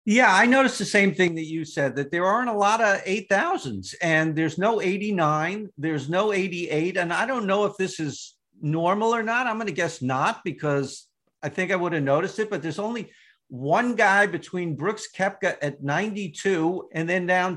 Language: English